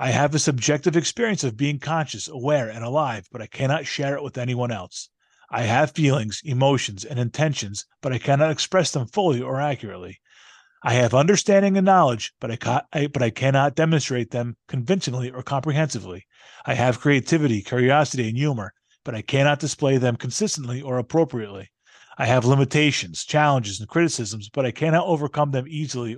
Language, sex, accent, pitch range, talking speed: English, male, American, 120-155 Hz, 175 wpm